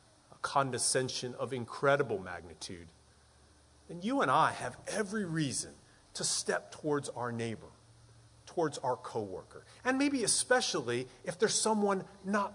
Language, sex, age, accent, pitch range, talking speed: English, male, 30-49, American, 125-200 Hz, 125 wpm